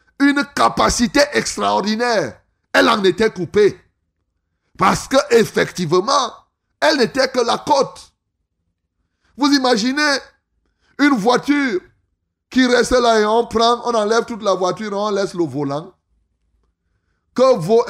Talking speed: 120 wpm